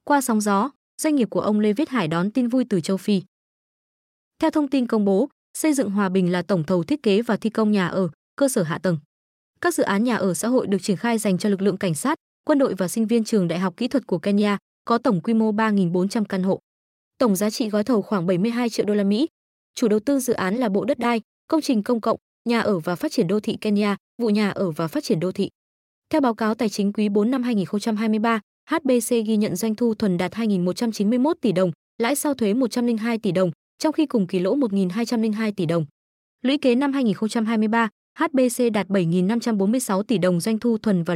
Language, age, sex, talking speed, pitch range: Vietnamese, 20-39, female, 235 wpm, 195-245 Hz